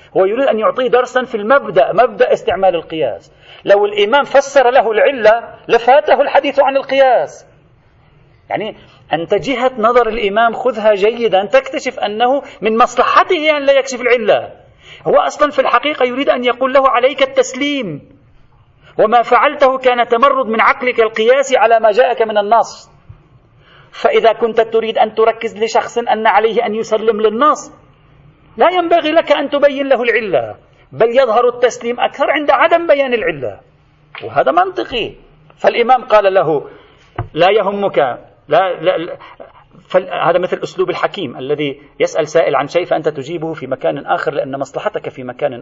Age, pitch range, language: 40-59, 200-275 Hz, Arabic